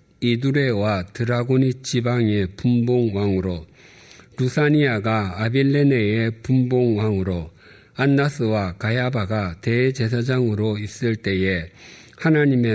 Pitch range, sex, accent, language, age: 105-145 Hz, male, native, Korean, 50-69